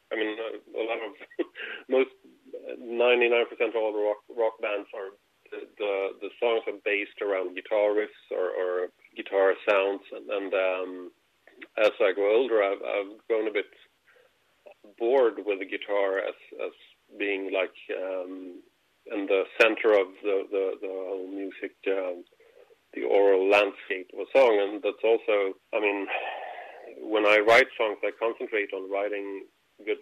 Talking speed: 155 wpm